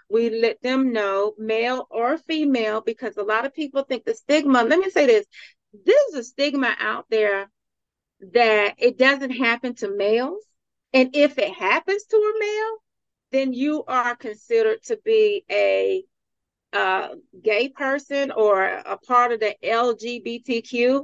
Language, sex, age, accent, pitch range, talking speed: English, female, 40-59, American, 220-295 Hz, 155 wpm